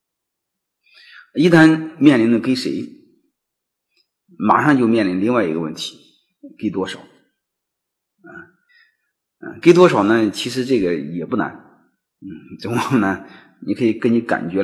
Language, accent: Chinese, native